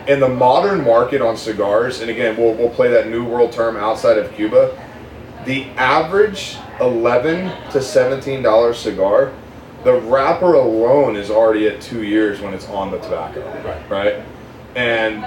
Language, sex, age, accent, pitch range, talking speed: English, male, 30-49, American, 110-140 Hz, 155 wpm